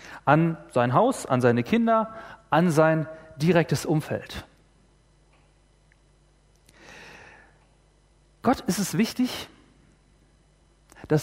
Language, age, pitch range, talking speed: German, 40-59, 155-210 Hz, 80 wpm